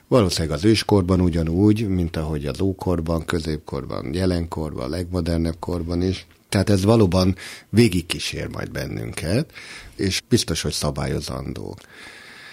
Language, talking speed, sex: Hungarian, 110 wpm, male